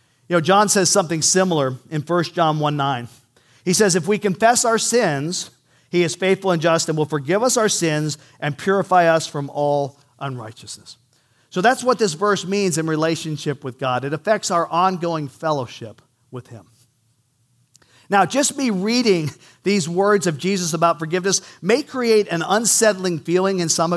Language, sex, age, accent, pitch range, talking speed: English, male, 50-69, American, 150-205 Hz, 170 wpm